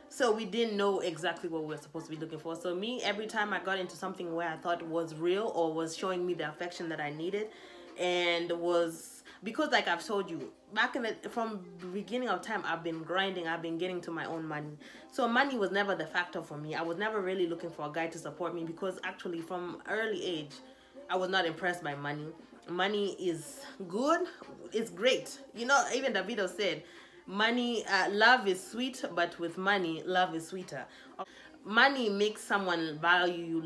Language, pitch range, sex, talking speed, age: English, 165-210 Hz, female, 205 wpm, 20-39